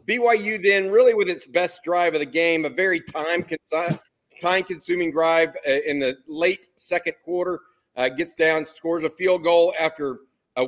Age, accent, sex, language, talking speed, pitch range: 50-69, American, male, English, 170 wpm, 145-175 Hz